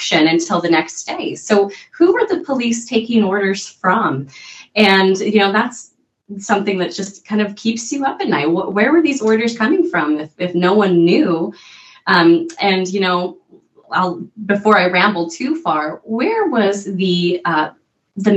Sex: female